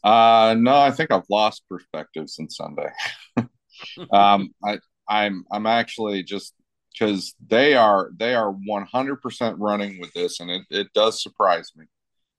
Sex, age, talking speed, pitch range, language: male, 40-59, 145 wpm, 90-105 Hz, English